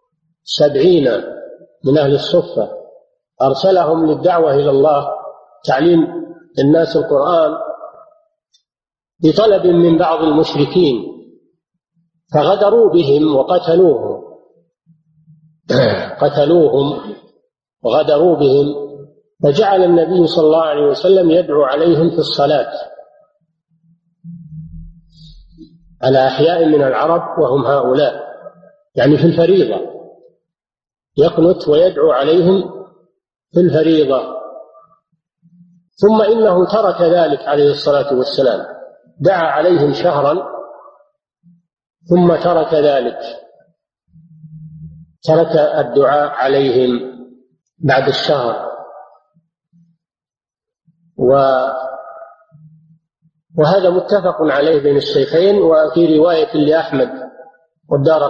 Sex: male